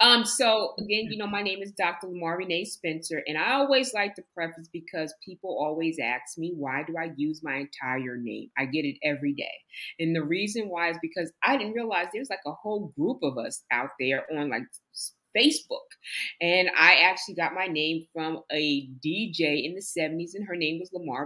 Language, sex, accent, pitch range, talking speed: English, female, American, 155-195 Hz, 205 wpm